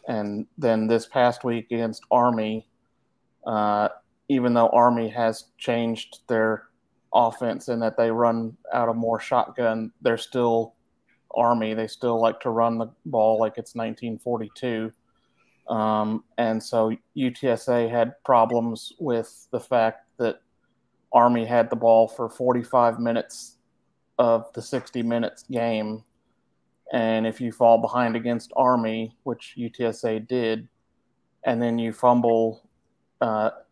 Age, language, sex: 30-49, English, male